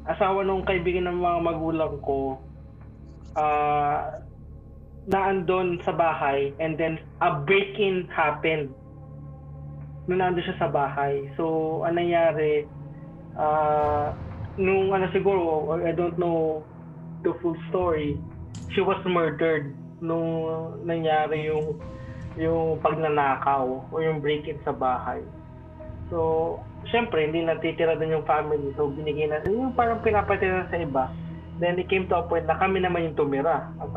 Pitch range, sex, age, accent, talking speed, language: 145-180 Hz, male, 20-39, Filipino, 120 wpm, English